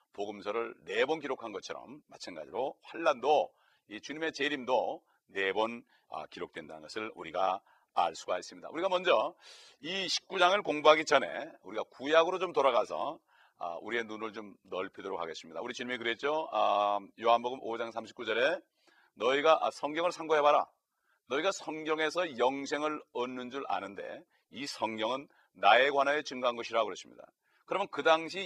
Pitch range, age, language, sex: 120-160 Hz, 40-59, Korean, male